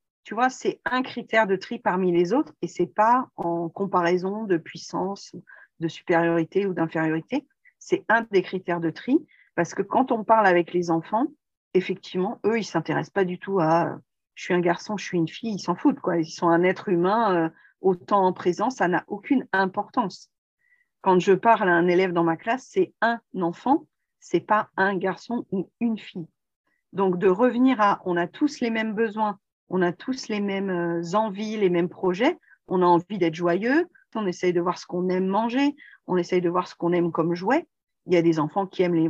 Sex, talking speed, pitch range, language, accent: female, 210 wpm, 175-225 Hz, French, French